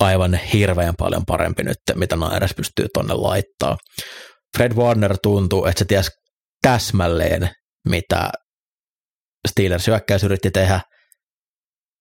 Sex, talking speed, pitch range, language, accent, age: male, 110 wpm, 90-100 Hz, Finnish, native, 30-49